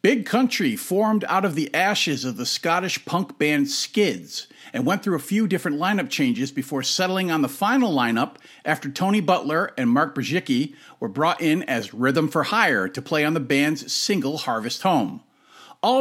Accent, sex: American, male